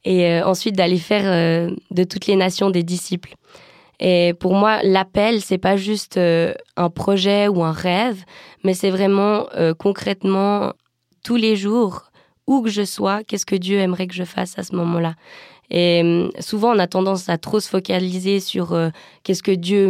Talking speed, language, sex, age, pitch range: 170 wpm, French, female, 20-39, 175-195 Hz